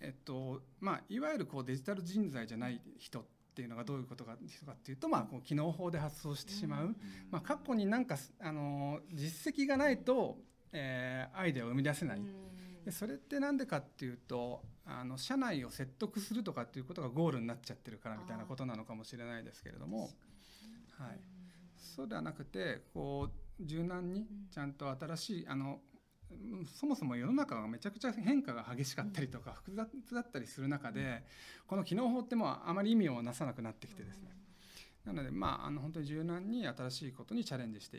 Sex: male